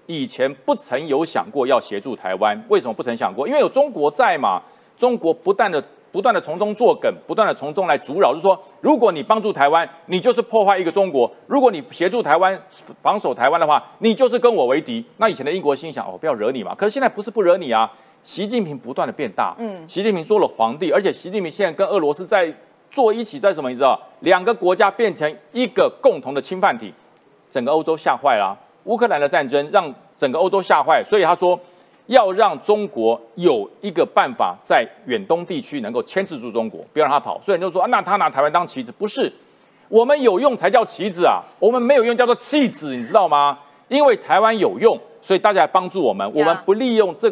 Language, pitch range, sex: Chinese, 175-245 Hz, male